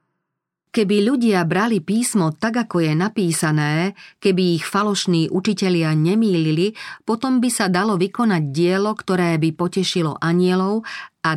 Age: 40-59